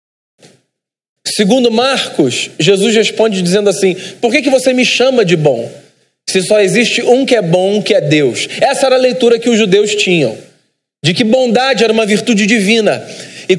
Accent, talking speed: Brazilian, 175 wpm